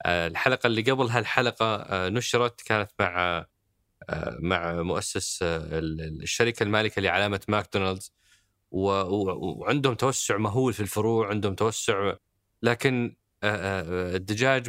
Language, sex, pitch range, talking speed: Arabic, male, 95-135 Hz, 90 wpm